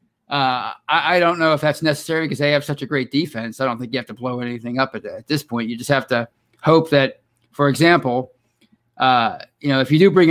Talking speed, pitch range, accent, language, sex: 250 wpm, 125-150 Hz, American, English, male